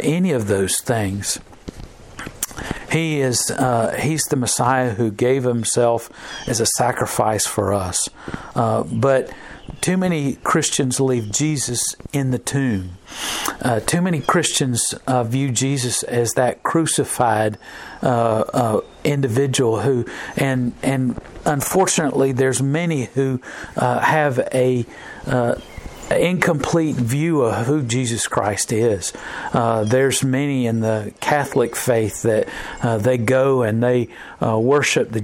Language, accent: English, American